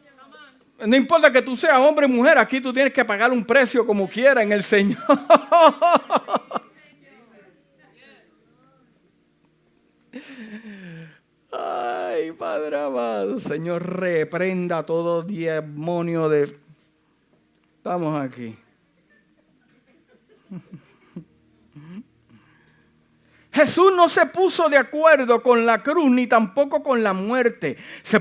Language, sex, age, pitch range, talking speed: Spanish, male, 50-69, 175-285 Hz, 95 wpm